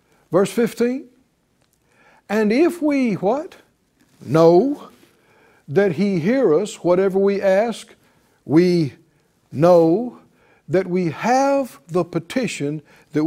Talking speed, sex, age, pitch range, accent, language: 100 wpm, male, 60-79, 150-195 Hz, American, English